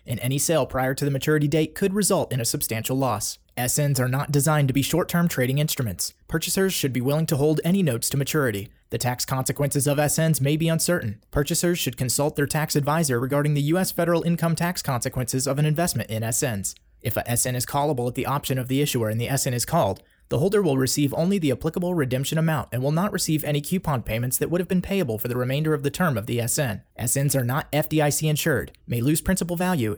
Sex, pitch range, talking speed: male, 125-160 Hz, 230 wpm